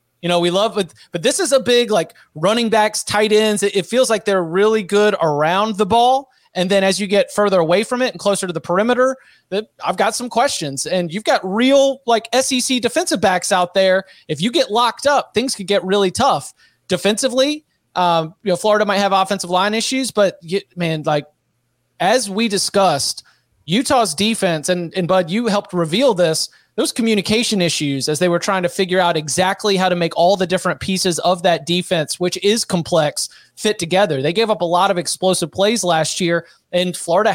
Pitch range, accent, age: 170-210 Hz, American, 30-49